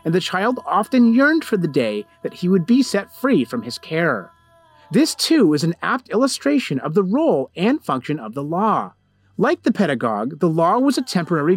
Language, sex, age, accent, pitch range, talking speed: English, male, 30-49, American, 165-245 Hz, 200 wpm